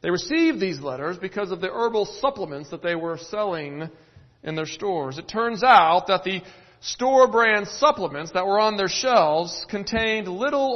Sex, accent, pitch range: male, American, 160-220 Hz